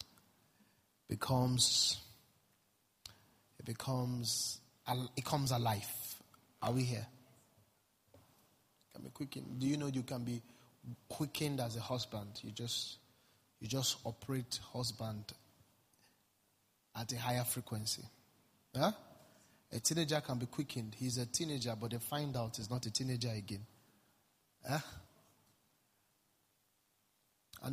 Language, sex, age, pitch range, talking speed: English, male, 30-49, 105-125 Hz, 115 wpm